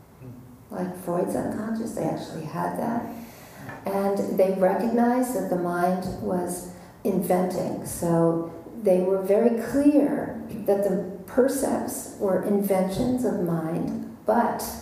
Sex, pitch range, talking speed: female, 180-235 Hz, 115 wpm